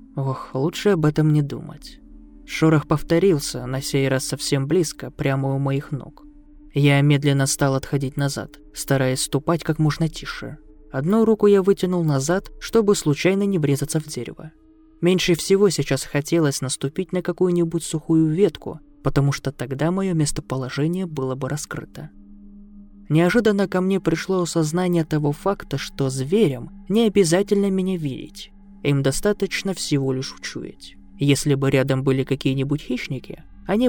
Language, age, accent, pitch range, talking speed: Russian, 20-39, native, 135-185 Hz, 140 wpm